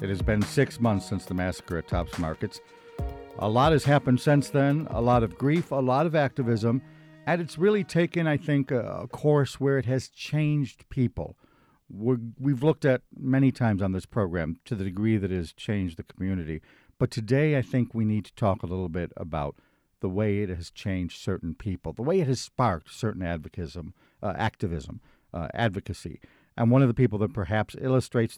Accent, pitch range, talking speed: American, 95-130 Hz, 200 wpm